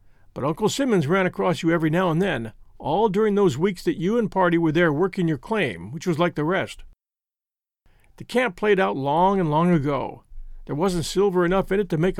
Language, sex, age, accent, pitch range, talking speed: English, male, 50-69, American, 140-200 Hz, 215 wpm